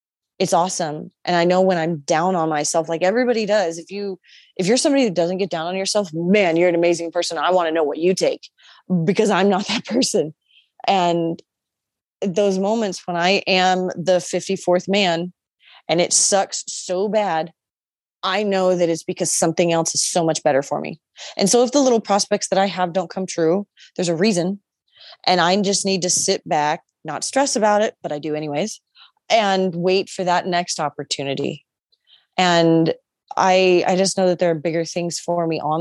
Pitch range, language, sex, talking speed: 165-200 Hz, English, female, 195 wpm